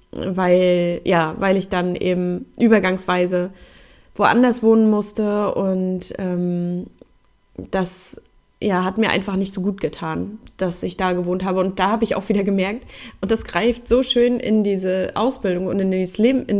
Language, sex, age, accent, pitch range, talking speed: German, female, 20-39, German, 185-215 Hz, 165 wpm